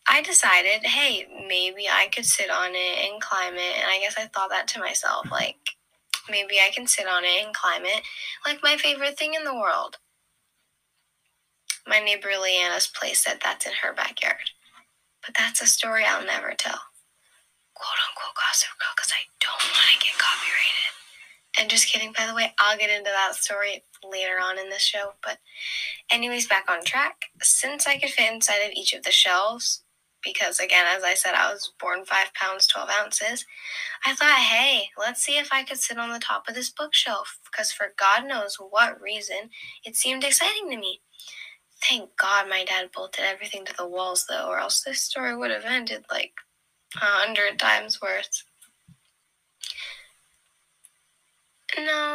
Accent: American